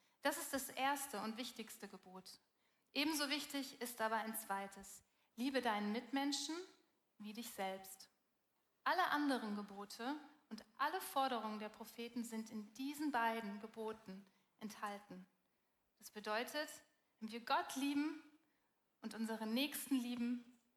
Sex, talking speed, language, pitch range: female, 125 wpm, German, 215-265 Hz